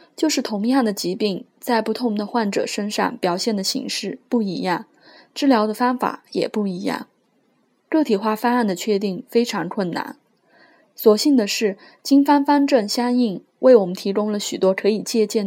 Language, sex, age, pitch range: Chinese, female, 20-39, 200-250 Hz